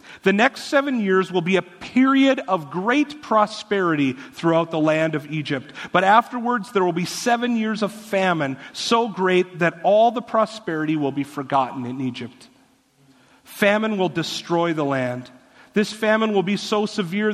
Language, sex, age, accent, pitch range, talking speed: English, male, 40-59, American, 155-210 Hz, 165 wpm